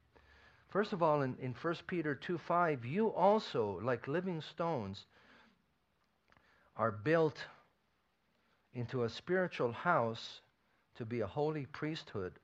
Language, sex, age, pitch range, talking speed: English, male, 50-69, 120-160 Hz, 120 wpm